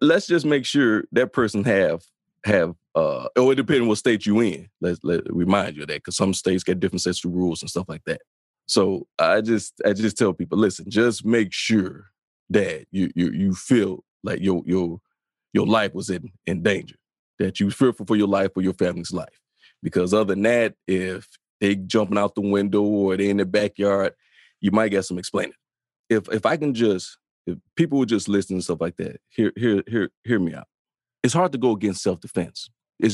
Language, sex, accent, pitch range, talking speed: English, male, American, 95-115 Hz, 210 wpm